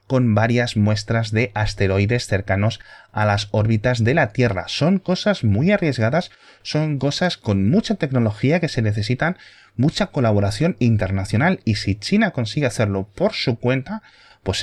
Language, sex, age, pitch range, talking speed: Spanish, male, 30-49, 100-135 Hz, 150 wpm